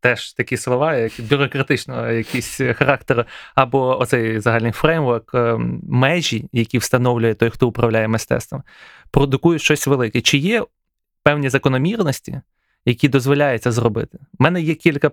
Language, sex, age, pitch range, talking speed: Ukrainian, male, 20-39, 120-150 Hz, 125 wpm